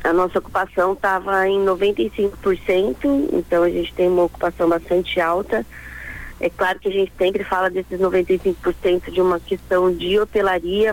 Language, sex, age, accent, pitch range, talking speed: Portuguese, female, 20-39, Brazilian, 180-205 Hz, 155 wpm